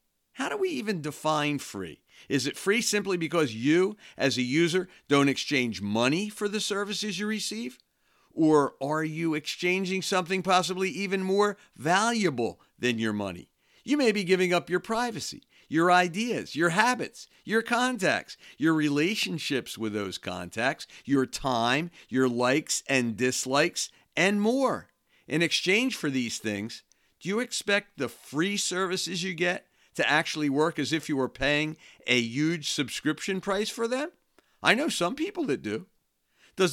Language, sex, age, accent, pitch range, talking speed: English, male, 50-69, American, 140-200 Hz, 155 wpm